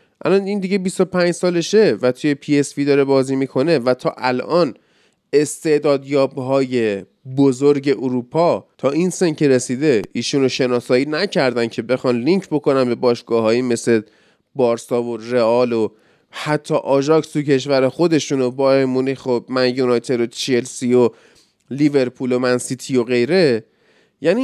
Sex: male